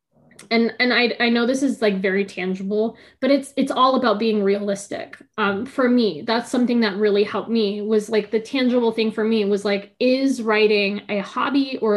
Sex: female